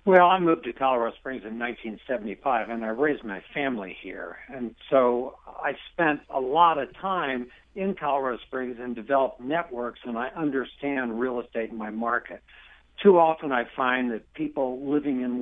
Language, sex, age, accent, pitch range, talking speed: English, male, 60-79, American, 120-155 Hz, 170 wpm